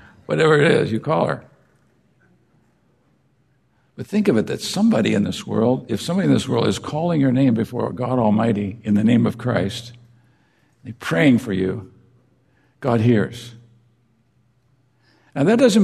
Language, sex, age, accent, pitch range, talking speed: English, male, 60-79, American, 115-145 Hz, 155 wpm